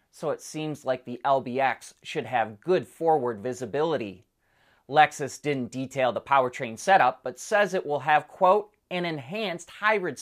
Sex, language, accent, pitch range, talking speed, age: male, English, American, 130-175 Hz, 155 wpm, 30-49